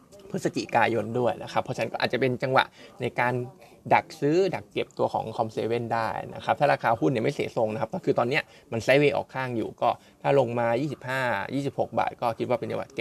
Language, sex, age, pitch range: Thai, male, 20-39, 115-140 Hz